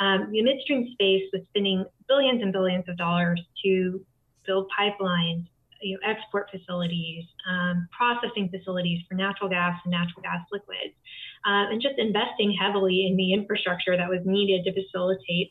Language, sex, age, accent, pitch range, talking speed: English, female, 20-39, American, 180-205 Hz, 150 wpm